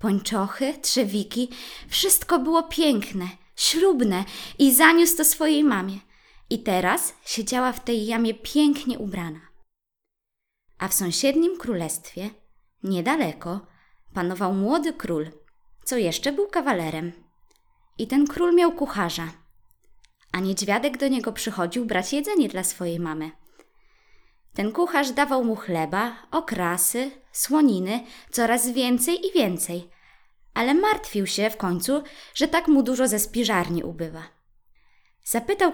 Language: Polish